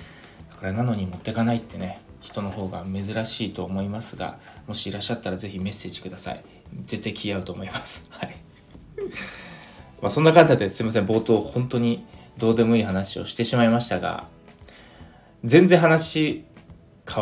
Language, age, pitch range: Japanese, 20-39, 105-150 Hz